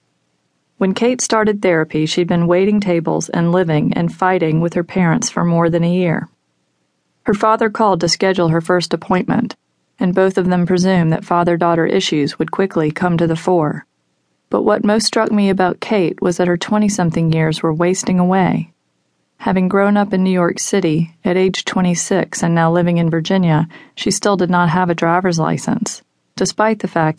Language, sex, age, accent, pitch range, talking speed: English, female, 40-59, American, 160-195 Hz, 185 wpm